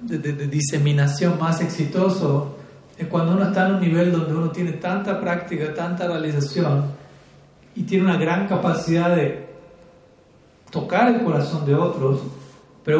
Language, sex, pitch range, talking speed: Spanish, male, 140-175 Hz, 150 wpm